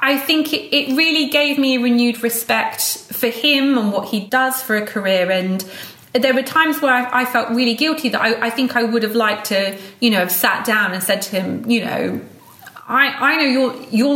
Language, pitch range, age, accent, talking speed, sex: English, 200-255 Hz, 30-49, British, 230 wpm, female